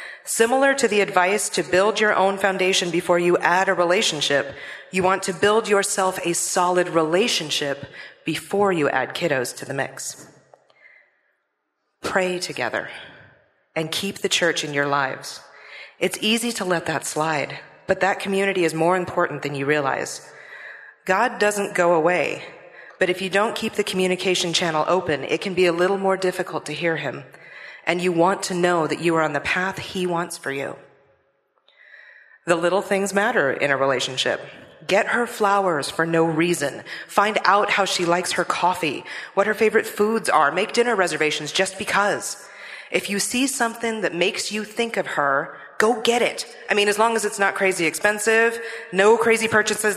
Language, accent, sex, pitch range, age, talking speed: English, American, female, 165-205 Hz, 40-59, 175 wpm